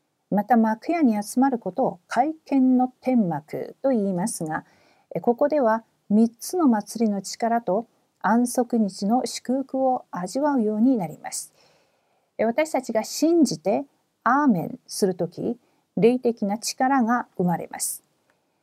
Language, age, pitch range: Korean, 50-69, 195-255 Hz